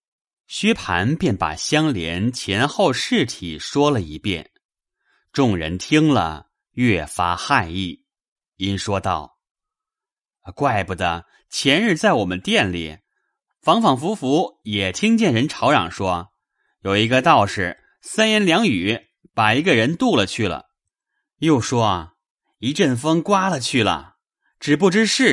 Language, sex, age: Chinese, male, 30-49